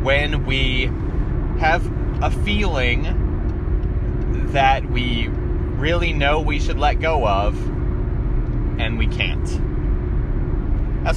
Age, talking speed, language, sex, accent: 30-49, 95 wpm, English, male, American